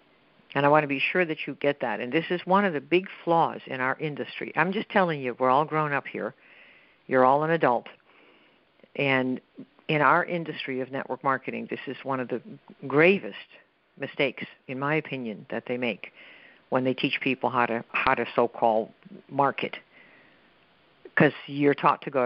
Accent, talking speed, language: American, 185 wpm, English